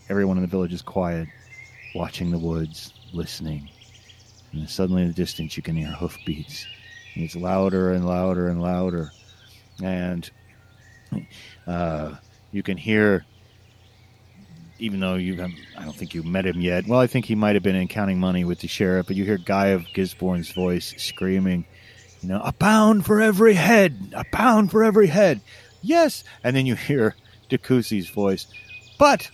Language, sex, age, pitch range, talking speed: English, male, 40-59, 95-155 Hz, 170 wpm